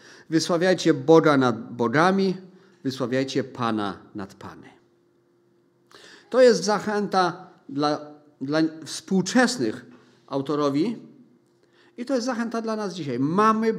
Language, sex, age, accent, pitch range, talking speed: Polish, male, 40-59, native, 155-205 Hz, 100 wpm